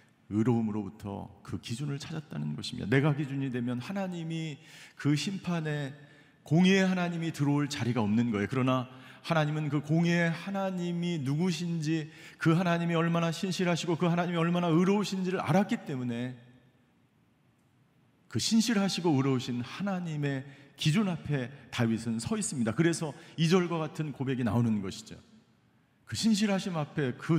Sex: male